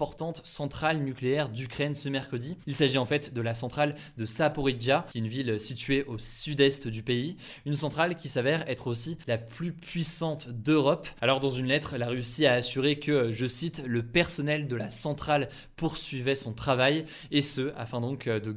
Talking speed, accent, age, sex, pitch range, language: 185 wpm, French, 20-39, male, 120-145 Hz, French